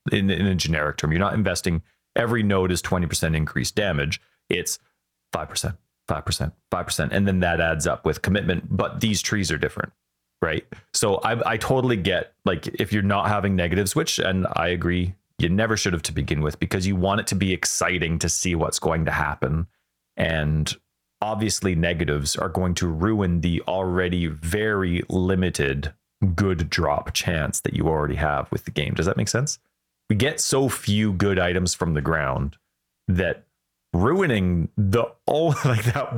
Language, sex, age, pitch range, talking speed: English, male, 30-49, 80-105 Hz, 175 wpm